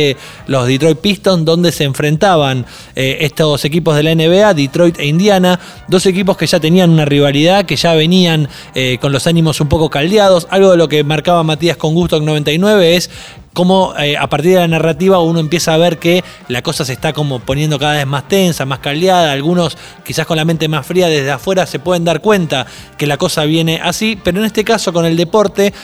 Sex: male